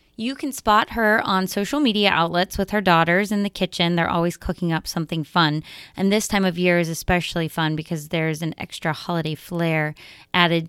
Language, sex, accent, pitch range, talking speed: English, female, American, 170-205 Hz, 195 wpm